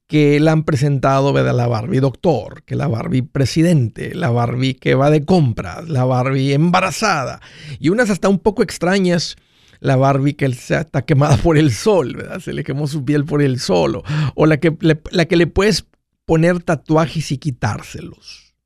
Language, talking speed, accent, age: Spanish, 185 wpm, Mexican, 50-69